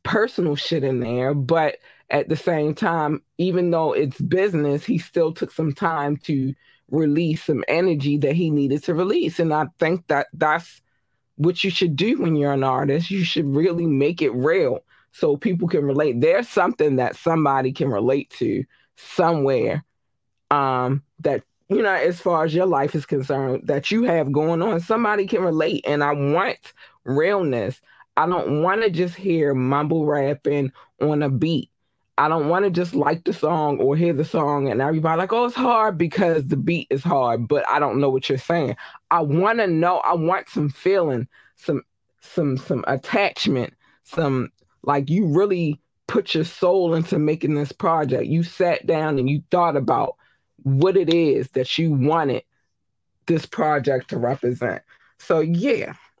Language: English